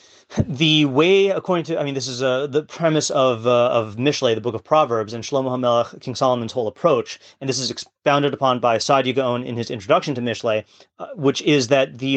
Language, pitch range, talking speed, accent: English, 120-145 Hz, 215 wpm, American